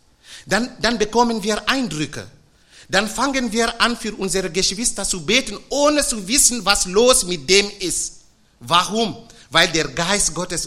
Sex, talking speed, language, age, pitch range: male, 150 wpm, German, 50-69, 150-210 Hz